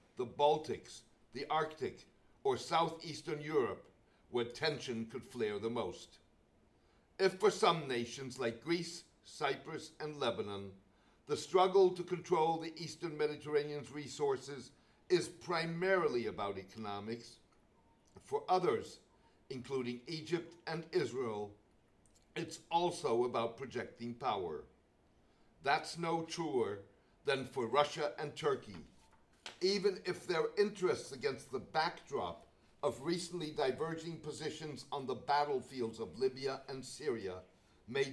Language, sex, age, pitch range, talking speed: English, male, 60-79, 120-170 Hz, 115 wpm